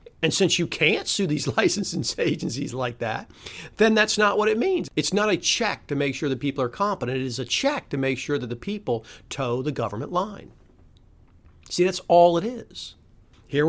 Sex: male